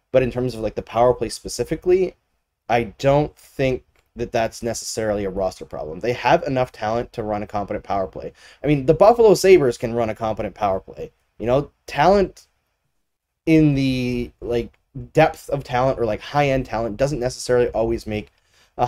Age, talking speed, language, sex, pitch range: 20-39, 185 wpm, English, male, 110-140 Hz